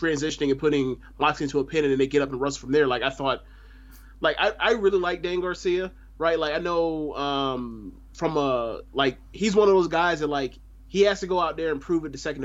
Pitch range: 135-175 Hz